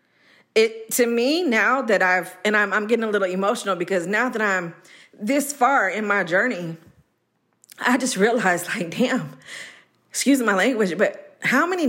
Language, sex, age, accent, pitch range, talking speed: English, female, 40-59, American, 210-280 Hz, 165 wpm